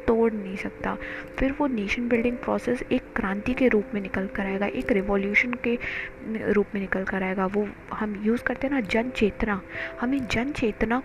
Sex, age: female, 20-39